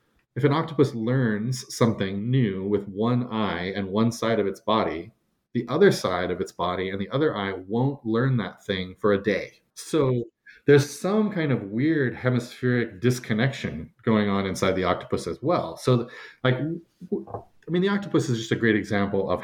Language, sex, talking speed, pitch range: English, male, 180 wpm, 100-120 Hz